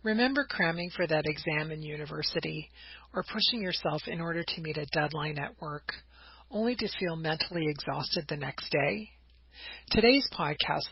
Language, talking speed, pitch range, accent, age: English, 155 wpm, 155-185 Hz, American, 40-59